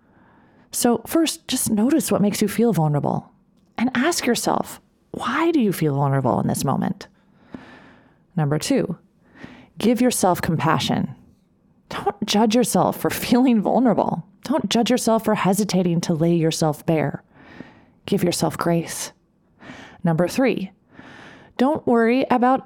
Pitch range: 175-250 Hz